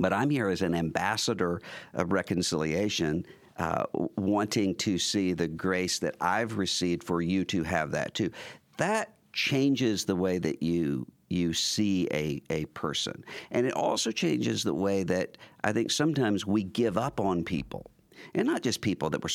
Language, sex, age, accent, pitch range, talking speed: English, male, 50-69, American, 85-110 Hz, 170 wpm